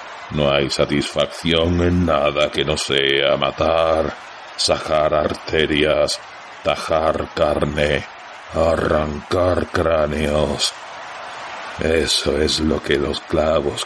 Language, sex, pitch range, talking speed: Spanish, male, 75-85 Hz, 90 wpm